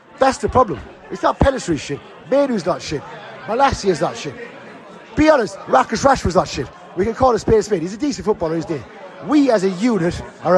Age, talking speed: 30-49, 215 wpm